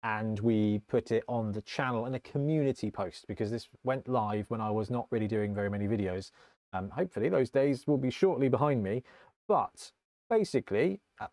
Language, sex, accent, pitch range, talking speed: English, male, British, 105-140 Hz, 190 wpm